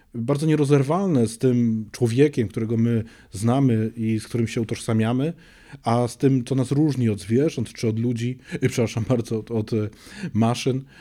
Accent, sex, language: native, male, Polish